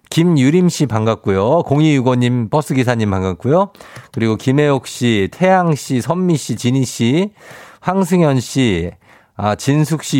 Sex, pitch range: male, 105-145 Hz